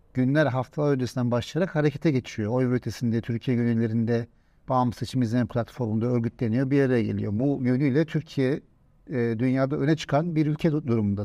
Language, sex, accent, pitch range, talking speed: Turkish, male, native, 125-170 Hz, 150 wpm